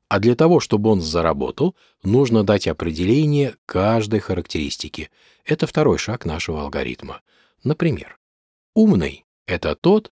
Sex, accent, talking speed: male, native, 125 wpm